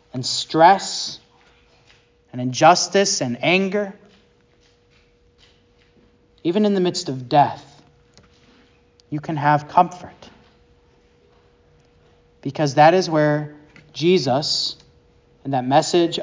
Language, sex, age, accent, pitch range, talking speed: English, male, 30-49, American, 130-160 Hz, 90 wpm